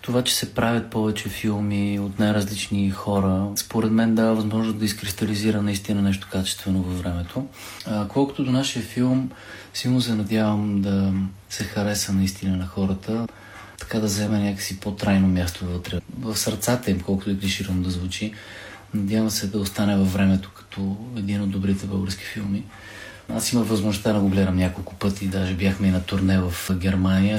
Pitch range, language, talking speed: 95-110 Hz, Bulgarian, 165 wpm